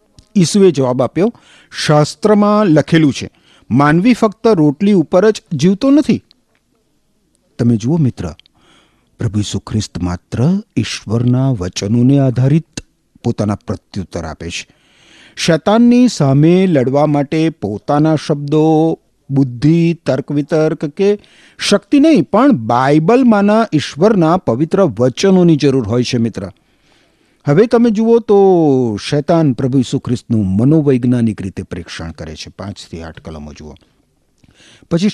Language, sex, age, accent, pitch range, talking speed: Gujarati, male, 50-69, native, 120-185 Hz, 105 wpm